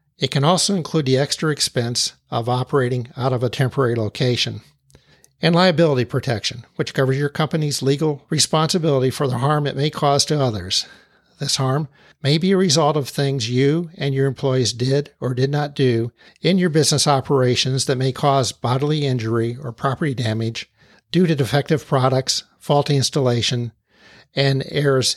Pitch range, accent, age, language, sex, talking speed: 125-145 Hz, American, 50-69, English, male, 160 wpm